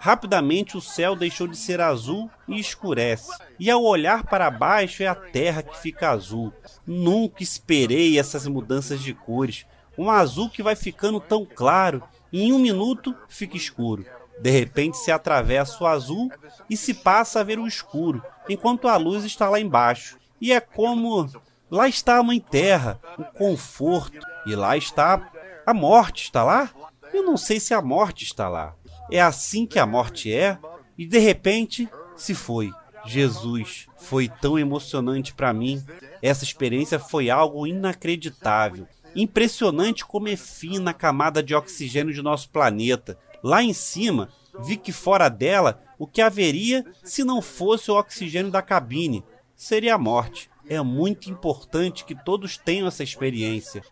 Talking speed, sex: 160 wpm, male